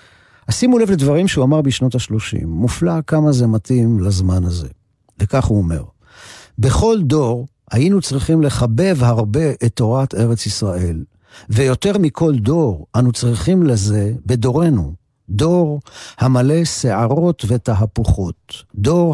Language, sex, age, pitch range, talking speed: Hebrew, male, 50-69, 105-140 Hz, 120 wpm